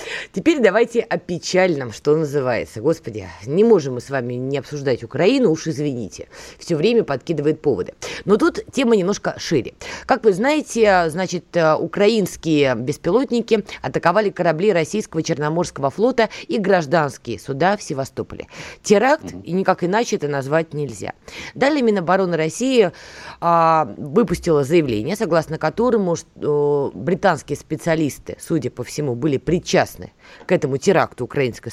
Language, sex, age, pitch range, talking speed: Russian, female, 20-39, 145-210 Hz, 125 wpm